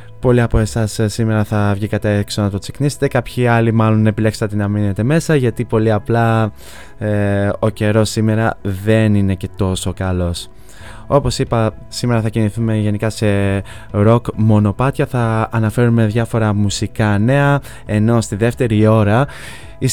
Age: 20-39